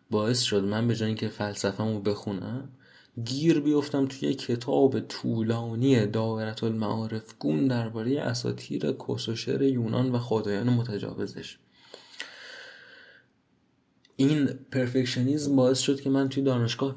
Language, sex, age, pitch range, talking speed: Persian, male, 20-39, 110-130 Hz, 110 wpm